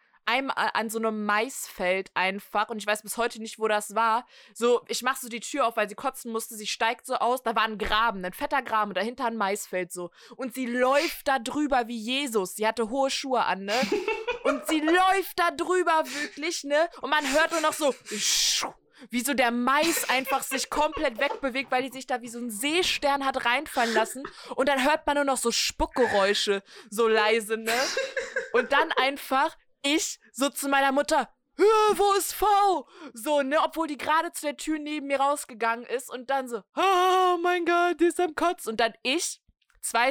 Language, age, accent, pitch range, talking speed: German, 20-39, German, 235-315 Hz, 200 wpm